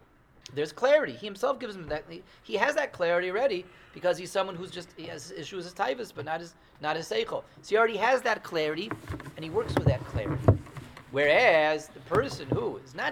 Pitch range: 150-210 Hz